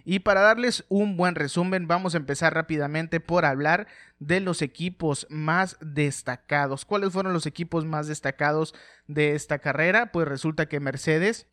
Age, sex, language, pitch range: 30-49, male, Spanish, 145-175 Hz